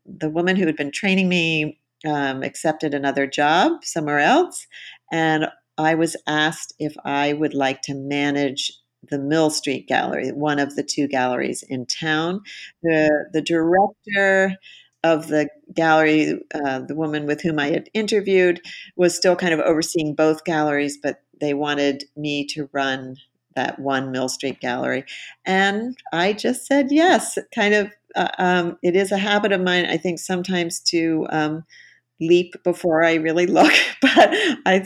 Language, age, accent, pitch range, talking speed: English, 50-69, American, 145-185 Hz, 160 wpm